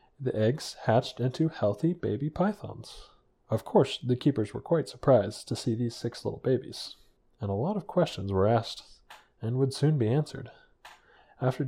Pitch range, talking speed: 110-145 Hz, 170 wpm